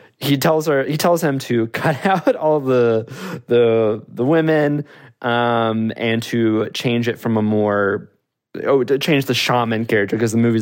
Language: English